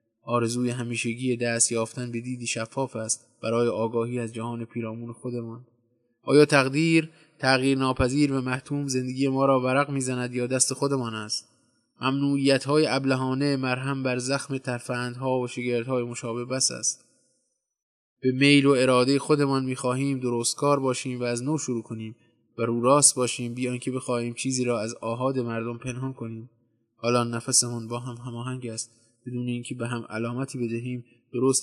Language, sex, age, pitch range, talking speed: Persian, male, 20-39, 115-135 Hz, 150 wpm